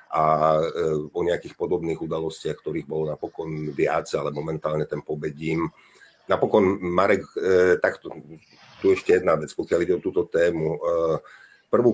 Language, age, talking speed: Slovak, 50-69, 135 wpm